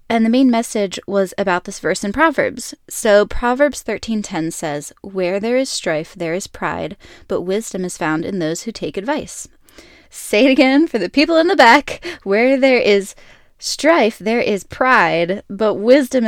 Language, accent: English, American